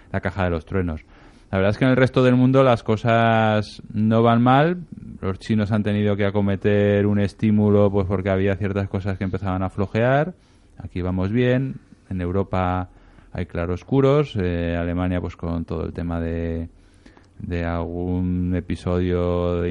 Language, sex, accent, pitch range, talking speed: Spanish, male, Spanish, 90-105 Hz, 165 wpm